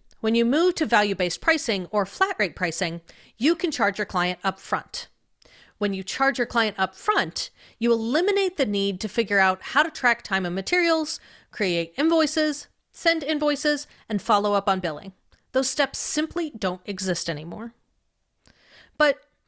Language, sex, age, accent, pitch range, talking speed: English, female, 40-59, American, 195-295 Hz, 165 wpm